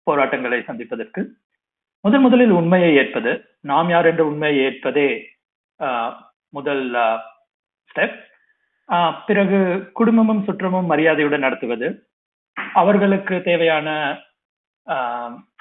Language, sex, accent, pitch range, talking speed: Tamil, male, native, 135-190 Hz, 75 wpm